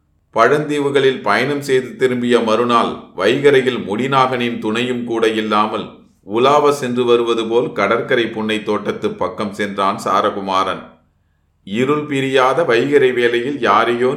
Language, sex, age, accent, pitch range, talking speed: Tamil, male, 30-49, native, 105-125 Hz, 105 wpm